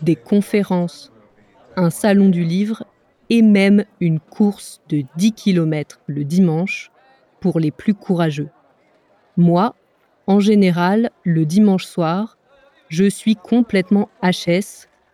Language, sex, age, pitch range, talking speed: English, female, 20-39, 170-205 Hz, 115 wpm